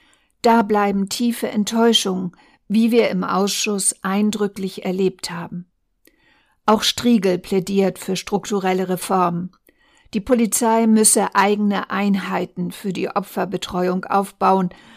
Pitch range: 190-220 Hz